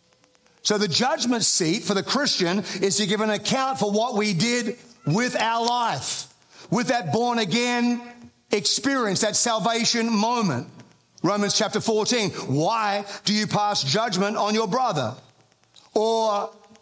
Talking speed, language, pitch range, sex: 140 wpm, English, 175-225 Hz, male